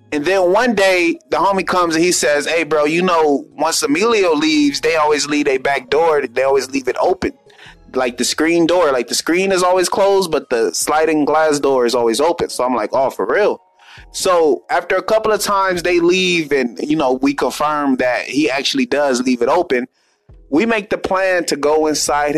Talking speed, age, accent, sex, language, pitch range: 210 wpm, 20-39, American, male, English, 145-205 Hz